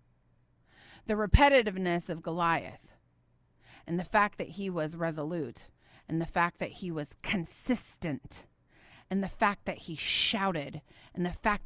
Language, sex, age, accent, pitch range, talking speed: English, female, 30-49, American, 140-180 Hz, 140 wpm